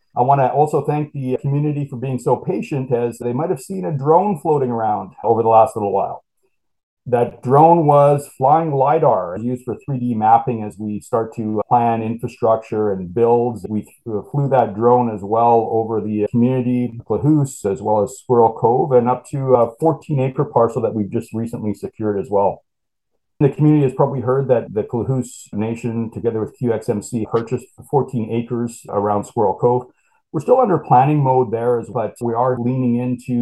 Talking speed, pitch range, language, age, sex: 180 wpm, 110-135 Hz, English, 40-59, male